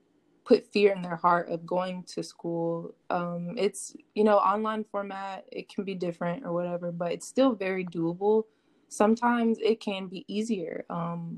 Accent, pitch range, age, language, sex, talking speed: American, 175-220 Hz, 20-39, English, female, 170 wpm